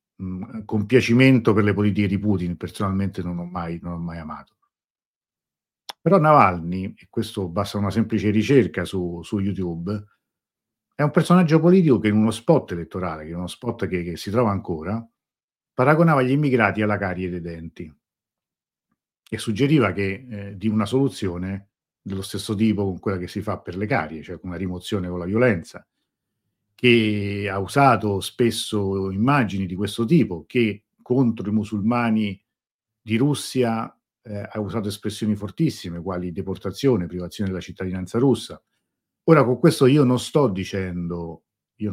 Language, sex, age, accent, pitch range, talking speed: Italian, male, 50-69, native, 90-115 Hz, 155 wpm